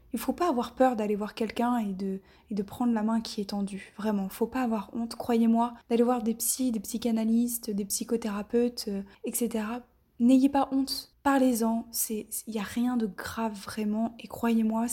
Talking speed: 195 wpm